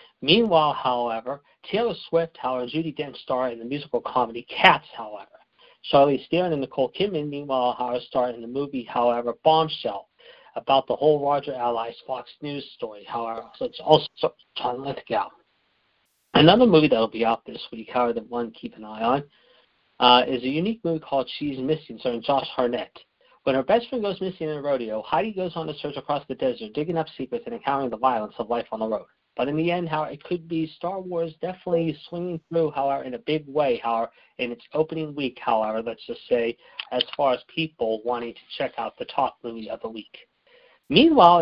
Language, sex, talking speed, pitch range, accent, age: English, male, 200 wpm, 125-165 Hz, American, 40-59